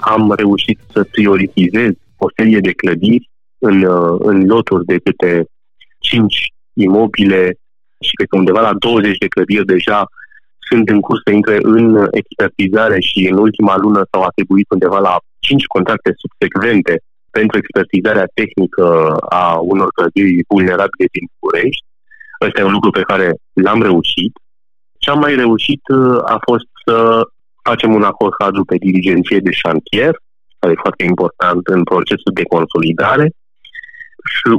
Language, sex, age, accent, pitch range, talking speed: Romanian, male, 30-49, native, 95-120 Hz, 140 wpm